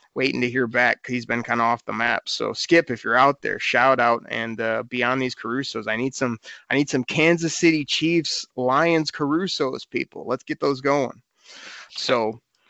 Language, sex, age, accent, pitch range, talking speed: English, male, 20-39, American, 125-145 Hz, 190 wpm